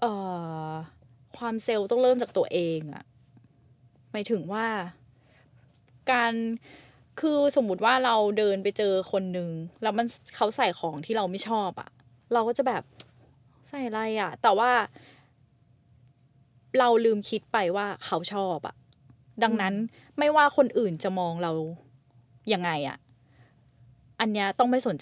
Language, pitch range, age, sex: Thai, 160-240 Hz, 20-39, female